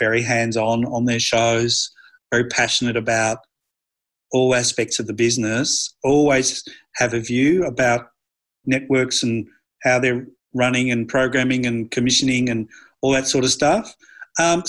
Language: English